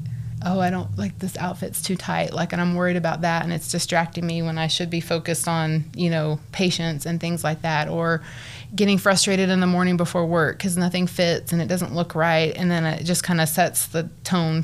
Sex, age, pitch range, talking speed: female, 20-39, 150-175 Hz, 230 wpm